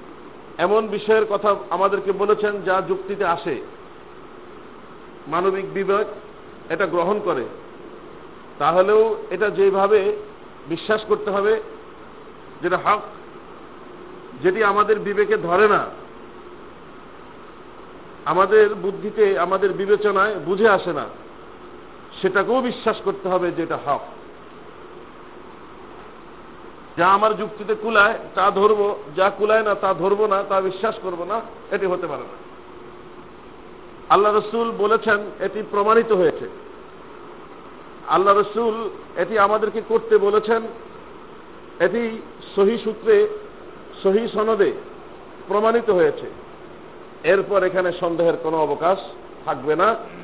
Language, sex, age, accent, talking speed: Bengali, male, 50-69, native, 60 wpm